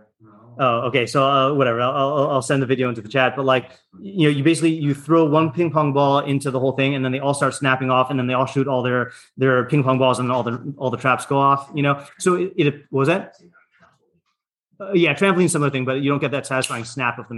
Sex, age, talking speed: male, 30-49, 265 wpm